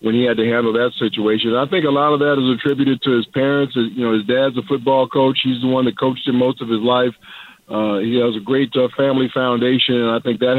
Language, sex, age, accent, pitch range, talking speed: English, male, 50-69, American, 125-150 Hz, 265 wpm